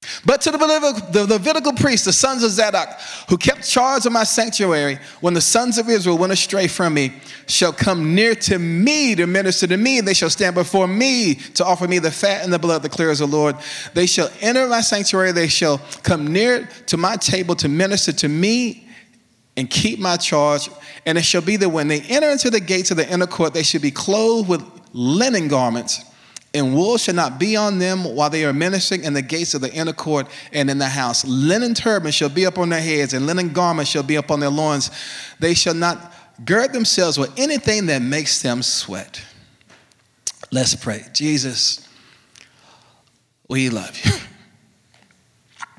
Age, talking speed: 30-49, 195 wpm